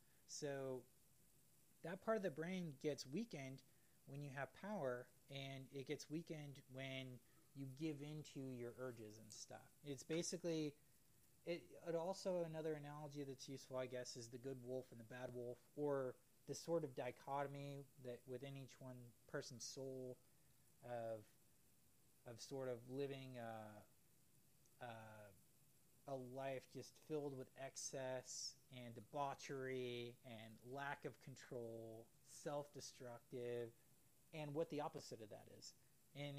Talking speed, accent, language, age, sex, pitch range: 135 wpm, American, English, 30-49, male, 125-150 Hz